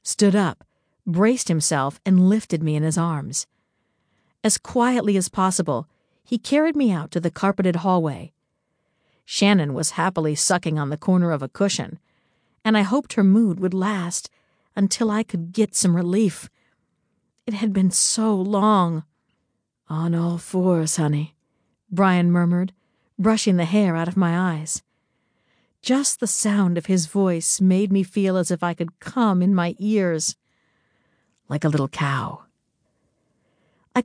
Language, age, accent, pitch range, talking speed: English, 50-69, American, 165-205 Hz, 150 wpm